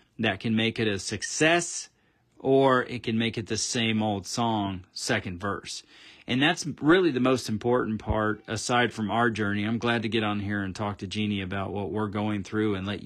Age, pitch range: 40-59, 105-120 Hz